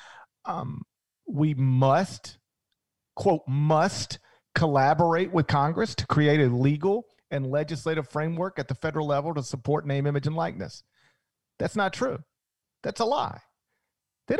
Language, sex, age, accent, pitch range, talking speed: English, male, 40-59, American, 145-220 Hz, 135 wpm